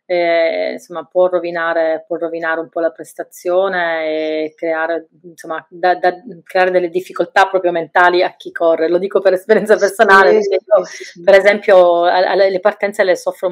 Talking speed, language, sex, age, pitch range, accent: 155 wpm, Italian, female, 30-49, 170-195 Hz, native